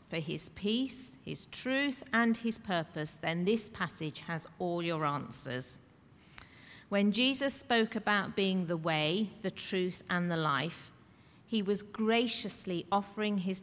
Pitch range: 165-220 Hz